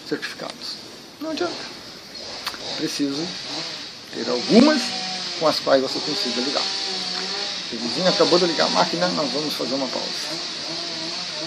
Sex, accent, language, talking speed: male, Brazilian, Portuguese, 115 wpm